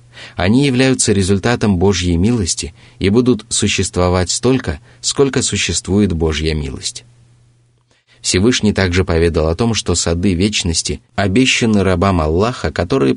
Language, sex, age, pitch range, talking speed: Russian, male, 30-49, 90-120 Hz, 115 wpm